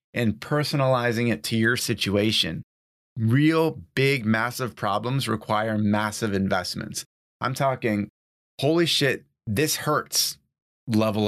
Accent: American